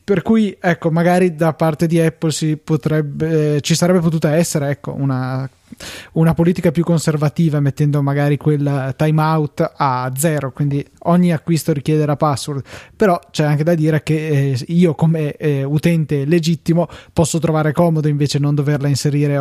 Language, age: Italian, 20-39